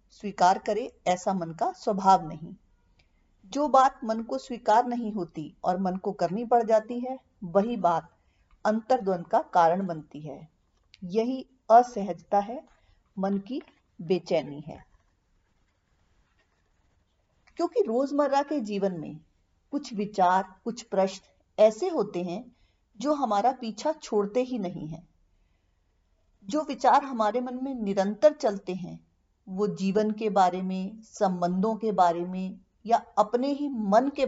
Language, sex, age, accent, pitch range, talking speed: Hindi, female, 50-69, native, 155-240 Hz, 135 wpm